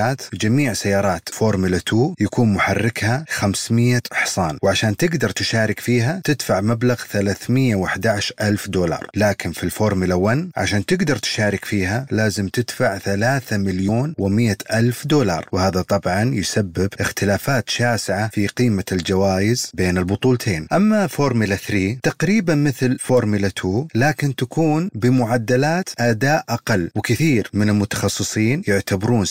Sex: male